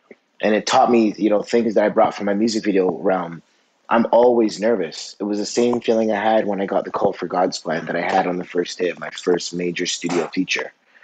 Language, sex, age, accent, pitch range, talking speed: English, male, 20-39, American, 95-115 Hz, 250 wpm